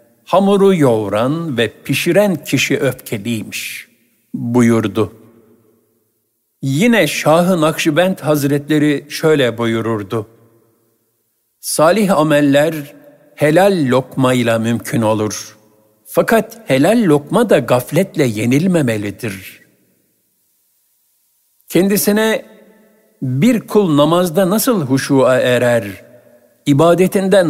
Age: 60-79